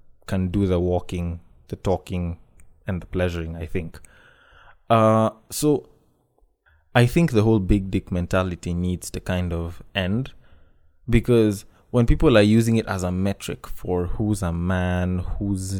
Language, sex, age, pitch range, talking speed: English, male, 20-39, 90-115 Hz, 150 wpm